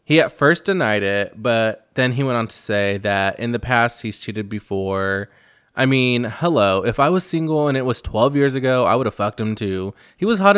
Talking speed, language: 235 wpm, English